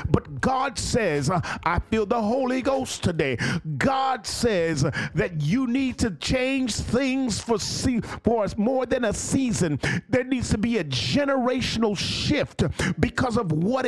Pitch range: 200-260 Hz